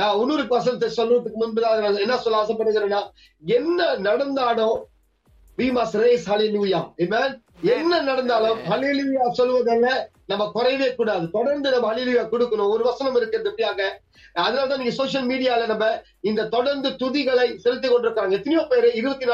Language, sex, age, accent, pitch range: Tamil, male, 30-49, native, 225-265 Hz